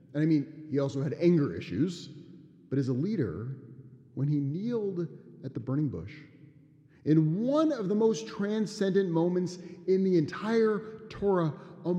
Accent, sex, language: American, male, English